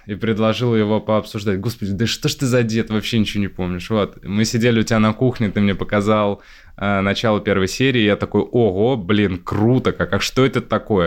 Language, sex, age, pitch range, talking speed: Russian, male, 20-39, 95-115 Hz, 210 wpm